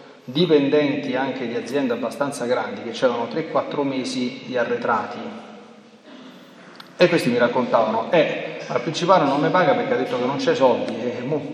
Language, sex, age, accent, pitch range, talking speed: Italian, male, 40-59, native, 130-210 Hz, 160 wpm